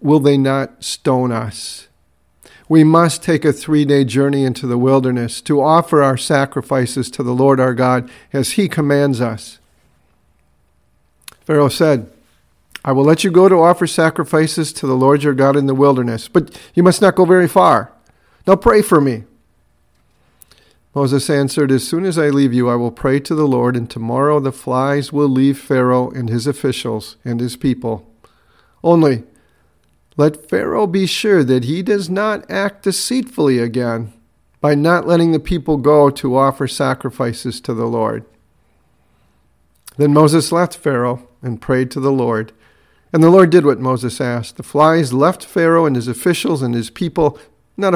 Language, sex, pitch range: English, male, 120-155 Hz